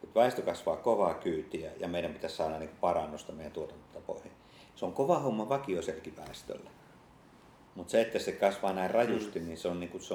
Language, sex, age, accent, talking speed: Finnish, male, 50-69, native, 160 wpm